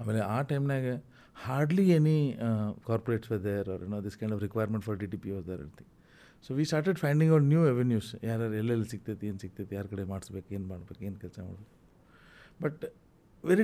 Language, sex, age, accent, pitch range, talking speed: Kannada, male, 50-69, native, 105-145 Hz, 185 wpm